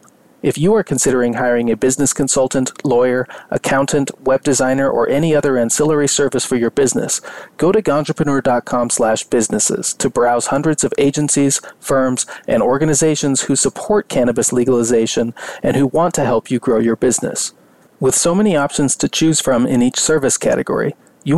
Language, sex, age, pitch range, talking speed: English, male, 40-59, 125-155 Hz, 160 wpm